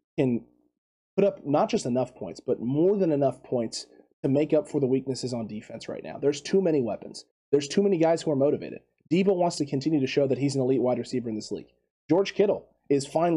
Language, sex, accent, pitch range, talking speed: English, male, American, 130-155 Hz, 235 wpm